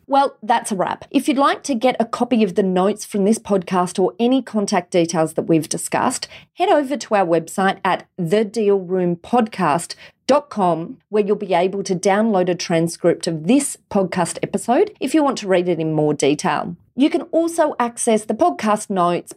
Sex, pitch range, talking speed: female, 175-240 Hz, 185 wpm